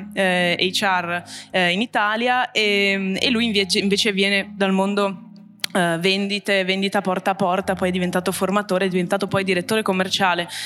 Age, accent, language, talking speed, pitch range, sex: 20-39, native, Italian, 160 wpm, 180-220 Hz, female